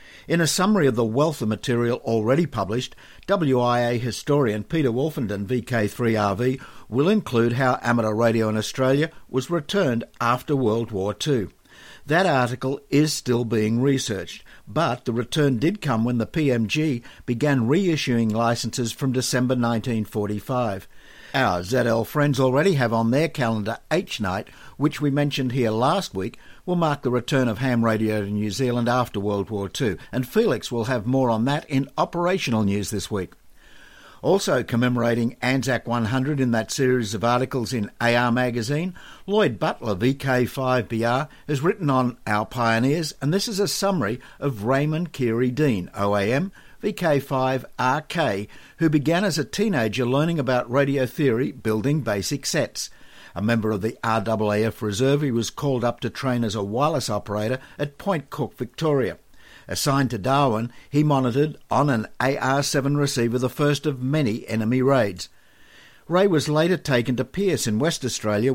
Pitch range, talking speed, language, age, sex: 115-145 Hz, 155 wpm, English, 60-79, male